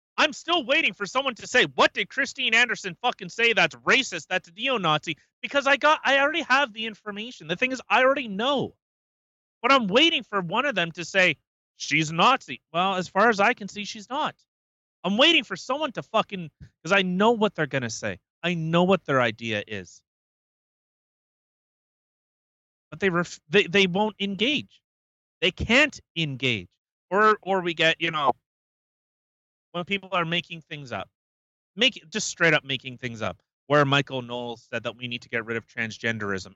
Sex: male